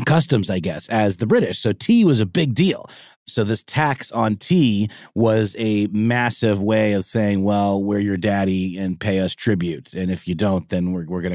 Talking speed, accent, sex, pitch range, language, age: 205 wpm, American, male, 95-125 Hz, English, 30-49